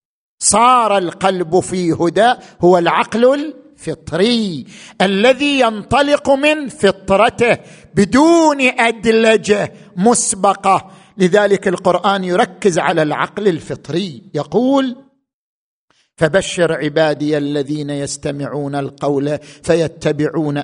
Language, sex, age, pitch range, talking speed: Arabic, male, 50-69, 155-220 Hz, 80 wpm